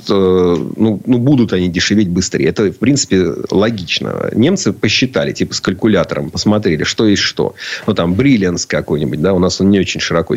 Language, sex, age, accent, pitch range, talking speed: Russian, male, 30-49, native, 90-110 Hz, 175 wpm